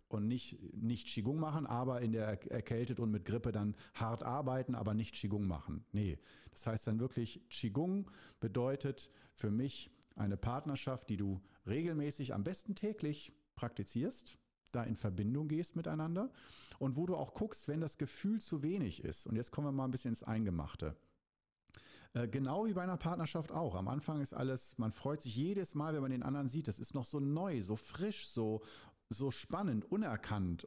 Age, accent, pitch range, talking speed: 50-69, German, 110-150 Hz, 185 wpm